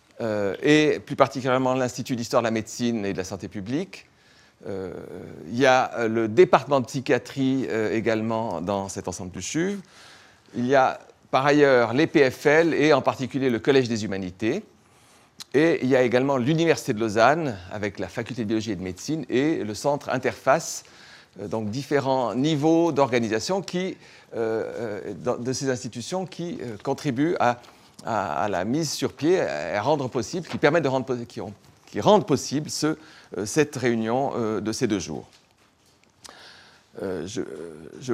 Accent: French